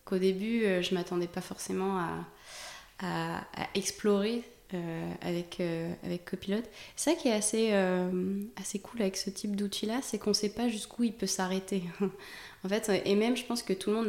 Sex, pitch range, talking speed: female, 175-200 Hz, 195 wpm